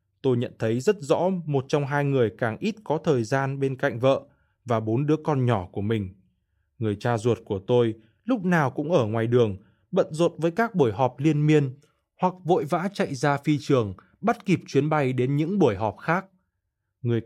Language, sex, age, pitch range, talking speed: Vietnamese, male, 20-39, 115-160 Hz, 210 wpm